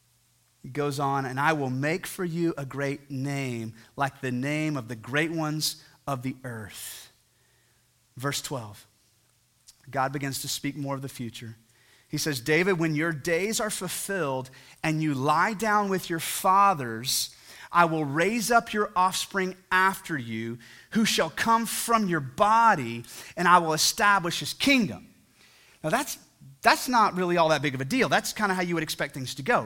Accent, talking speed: American, 180 wpm